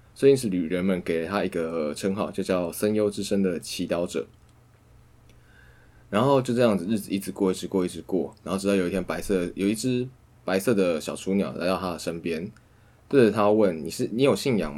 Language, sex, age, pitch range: Chinese, male, 20-39, 90-115 Hz